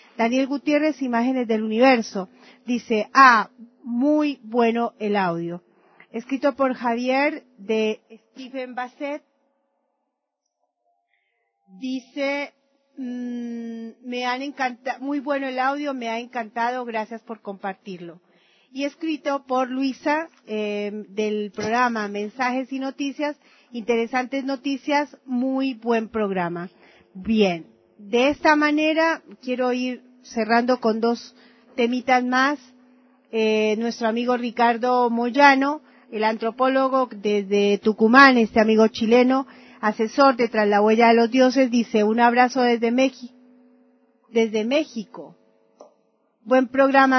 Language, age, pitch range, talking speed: Spanish, 40-59, 220-265 Hz, 110 wpm